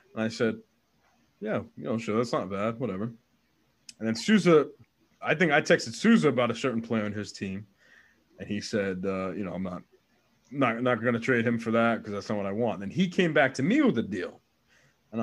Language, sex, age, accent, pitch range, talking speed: English, male, 20-39, American, 110-150 Hz, 225 wpm